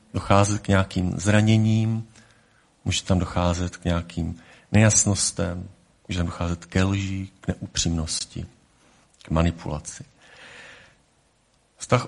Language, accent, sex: Czech, native, male